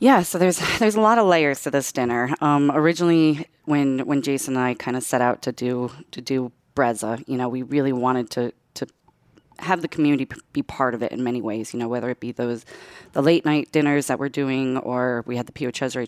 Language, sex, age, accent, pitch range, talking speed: English, female, 30-49, American, 120-145 Hz, 235 wpm